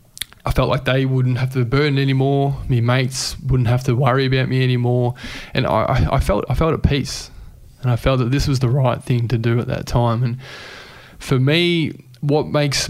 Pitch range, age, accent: 120-130 Hz, 20-39, Australian